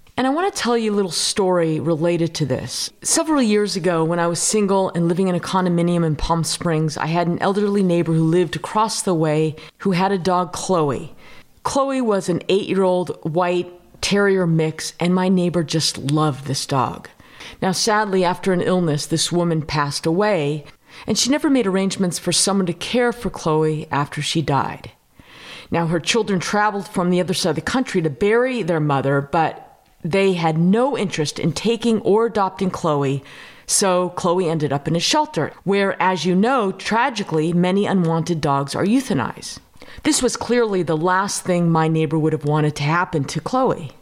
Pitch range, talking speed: 160-200 Hz, 185 wpm